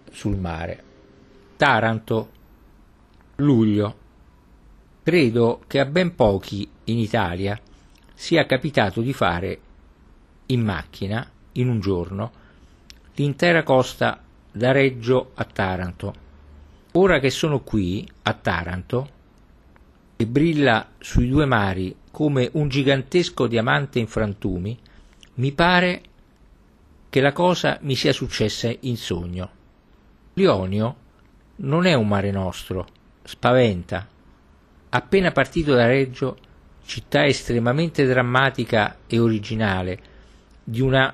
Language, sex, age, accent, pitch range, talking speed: Italian, male, 50-69, native, 95-135 Hz, 105 wpm